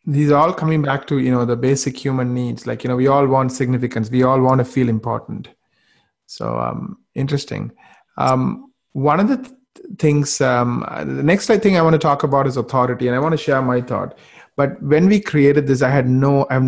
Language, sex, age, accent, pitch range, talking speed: English, male, 30-49, Indian, 120-145 Hz, 225 wpm